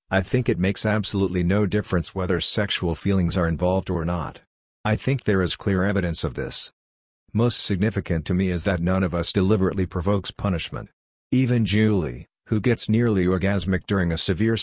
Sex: male